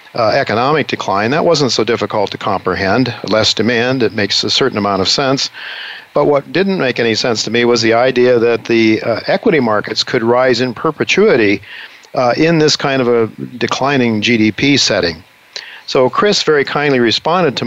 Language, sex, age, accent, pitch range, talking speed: English, male, 50-69, American, 115-140 Hz, 180 wpm